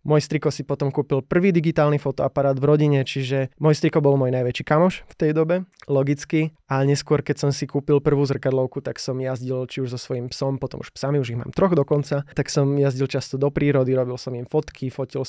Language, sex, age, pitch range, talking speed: Slovak, male, 20-39, 135-155 Hz, 220 wpm